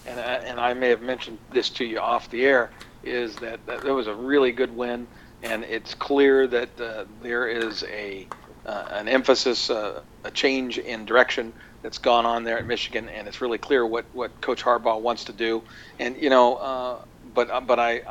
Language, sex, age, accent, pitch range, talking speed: English, male, 50-69, American, 115-125 Hz, 205 wpm